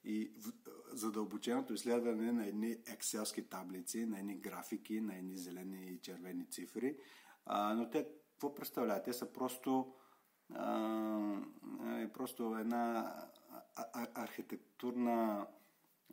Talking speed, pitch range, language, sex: 105 wpm, 100-125 Hz, Bulgarian, male